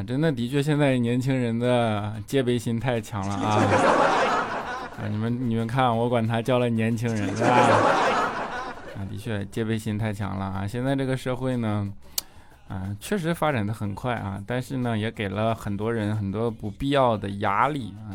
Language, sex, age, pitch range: Chinese, male, 20-39, 105-125 Hz